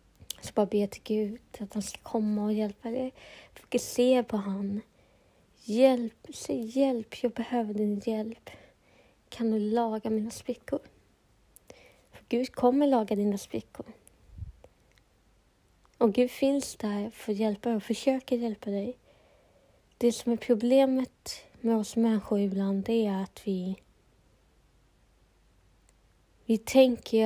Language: Swedish